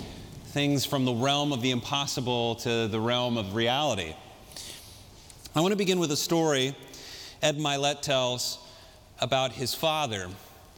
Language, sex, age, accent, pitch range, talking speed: Dutch, male, 40-59, American, 115-150 Hz, 140 wpm